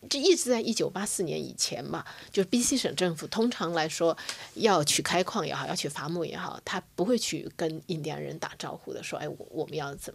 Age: 30-49